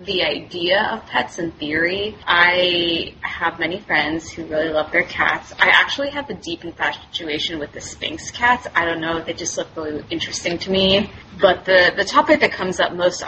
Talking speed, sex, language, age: 195 wpm, female, English, 20-39